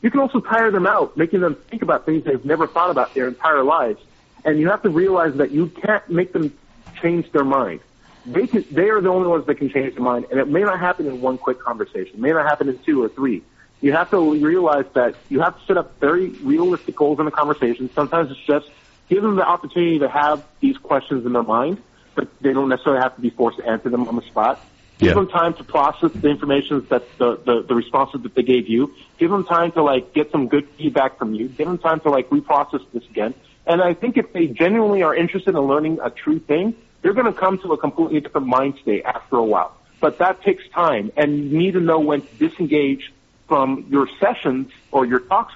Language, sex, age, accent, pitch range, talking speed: English, male, 40-59, American, 135-180 Hz, 240 wpm